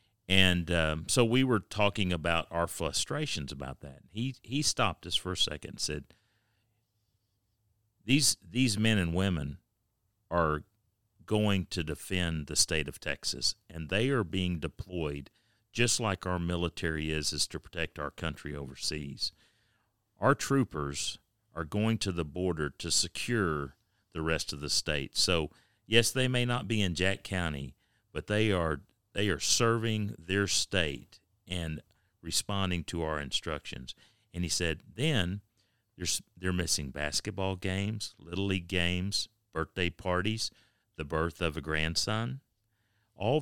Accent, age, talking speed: American, 50-69, 145 wpm